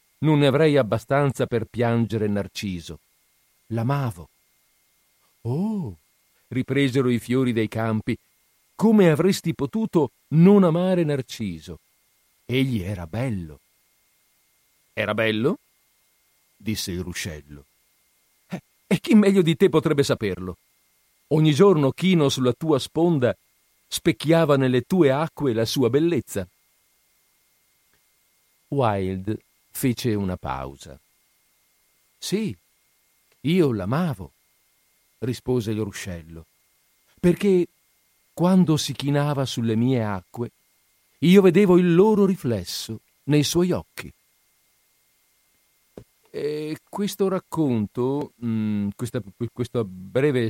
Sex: male